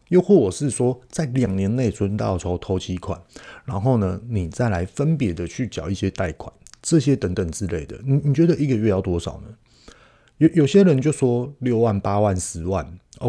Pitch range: 95-135 Hz